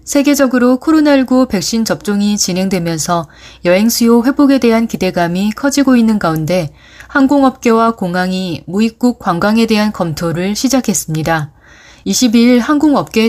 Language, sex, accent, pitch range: Korean, female, native, 185-250 Hz